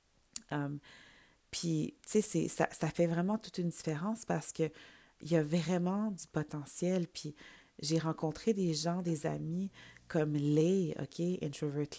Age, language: 30-49, English